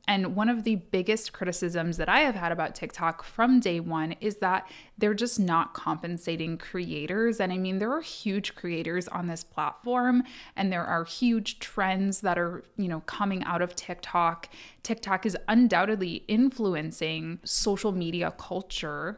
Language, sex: English, female